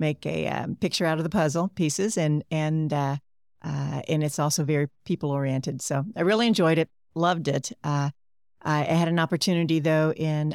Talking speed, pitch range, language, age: 190 wpm, 145-170 Hz, English, 50-69